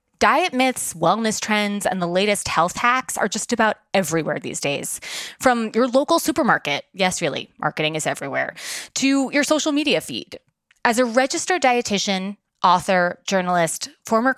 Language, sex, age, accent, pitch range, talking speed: English, female, 20-39, American, 175-255 Hz, 140 wpm